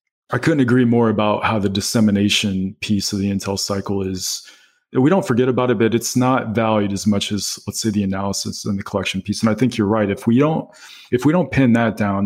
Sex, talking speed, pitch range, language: male, 235 wpm, 100-115 Hz, English